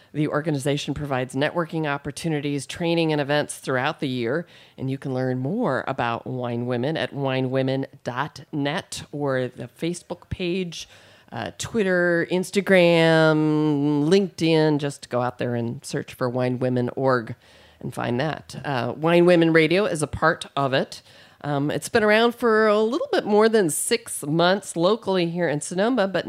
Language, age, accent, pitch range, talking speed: English, 40-59, American, 135-175 Hz, 155 wpm